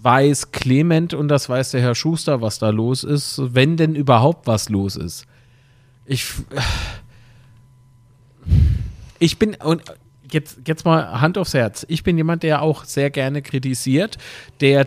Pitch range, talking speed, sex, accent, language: 125-150 Hz, 150 wpm, male, German, German